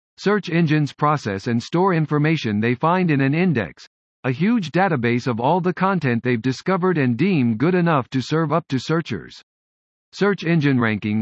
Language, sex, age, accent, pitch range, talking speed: English, male, 50-69, American, 125-175 Hz, 170 wpm